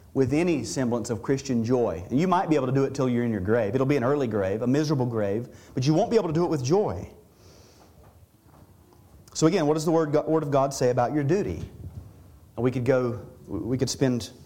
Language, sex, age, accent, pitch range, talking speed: English, male, 40-59, American, 110-160 Hz, 230 wpm